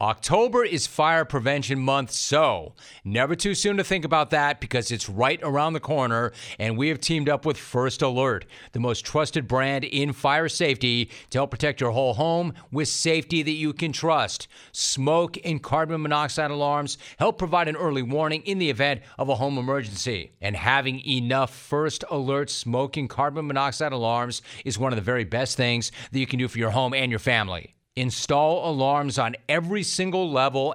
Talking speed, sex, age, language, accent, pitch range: 185 wpm, male, 40-59, English, American, 125-155 Hz